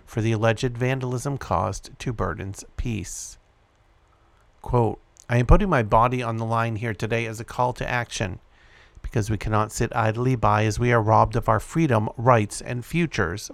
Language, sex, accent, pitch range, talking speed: English, male, American, 110-125 Hz, 175 wpm